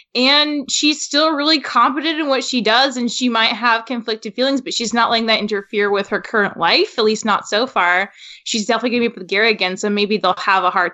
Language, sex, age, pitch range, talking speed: English, female, 20-39, 215-280 Hz, 245 wpm